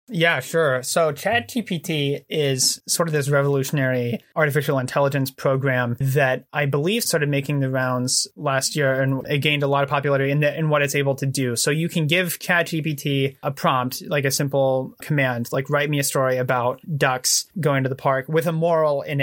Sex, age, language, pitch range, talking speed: male, 20-39, English, 135-155 Hz, 195 wpm